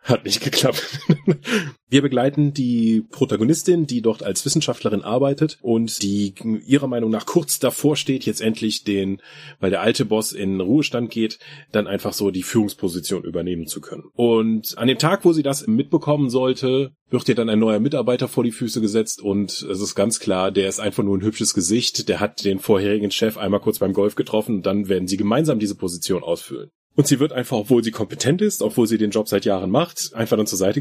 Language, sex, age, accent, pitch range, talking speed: German, male, 30-49, German, 100-135 Hz, 205 wpm